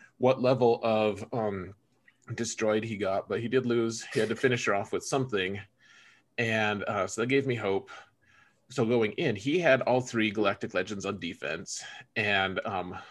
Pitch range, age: 100-120 Hz, 30-49